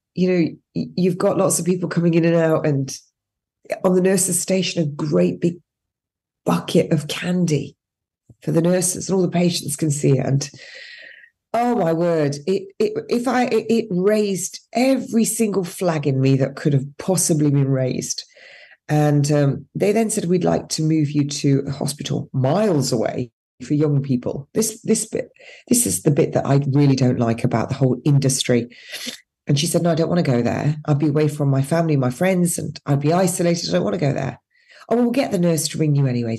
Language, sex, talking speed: English, female, 210 wpm